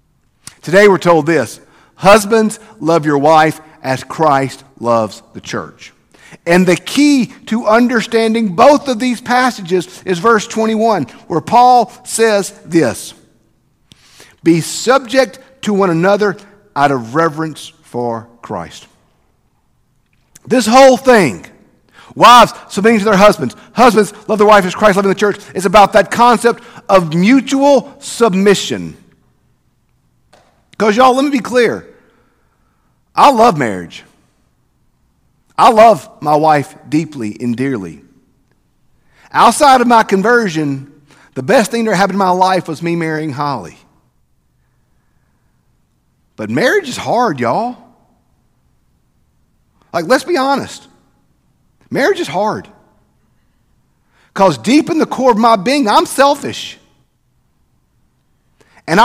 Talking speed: 120 wpm